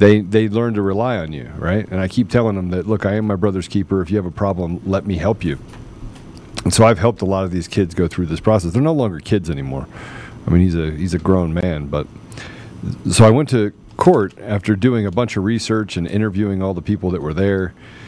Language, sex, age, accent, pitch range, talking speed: English, male, 40-59, American, 100-130 Hz, 250 wpm